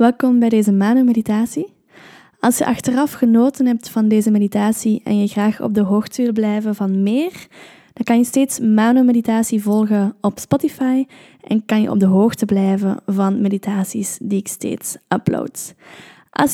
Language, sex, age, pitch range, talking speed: Dutch, female, 10-29, 205-245 Hz, 160 wpm